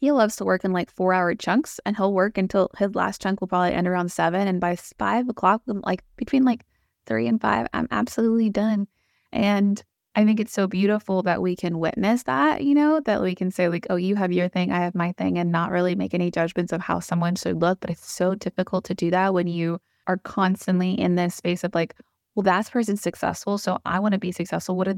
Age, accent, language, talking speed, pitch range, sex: 20-39, American, English, 240 wpm, 175-200 Hz, female